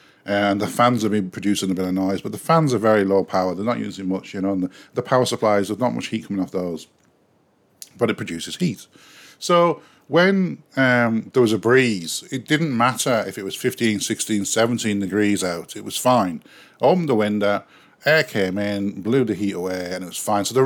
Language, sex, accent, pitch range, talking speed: English, male, British, 100-130 Hz, 215 wpm